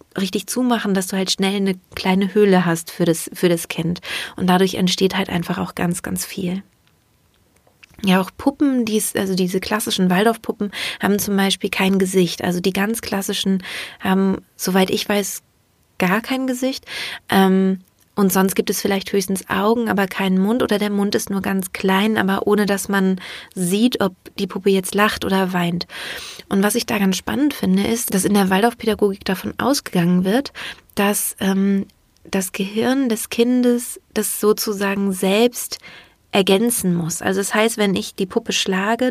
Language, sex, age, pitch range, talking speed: German, female, 30-49, 190-215 Hz, 170 wpm